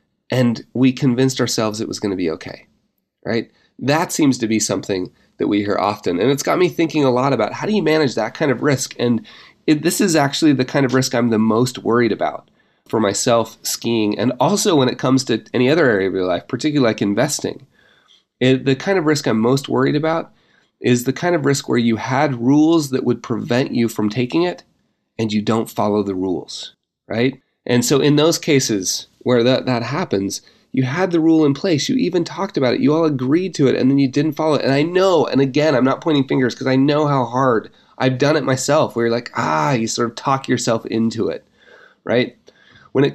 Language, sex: English, male